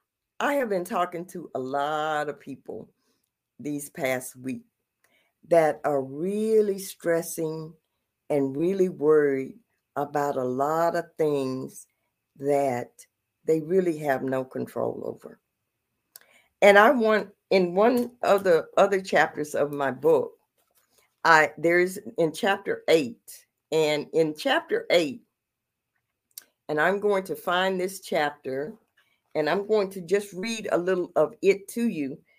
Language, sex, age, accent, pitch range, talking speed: English, female, 50-69, American, 150-205 Hz, 130 wpm